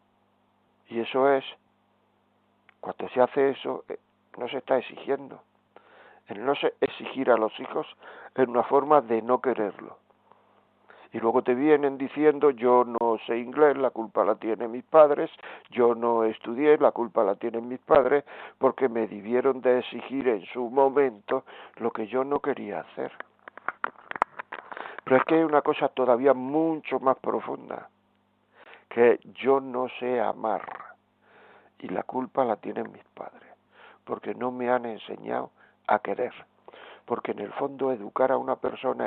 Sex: male